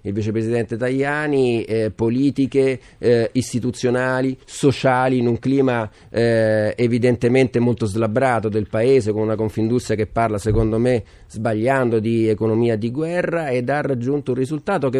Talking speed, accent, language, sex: 140 wpm, native, Italian, male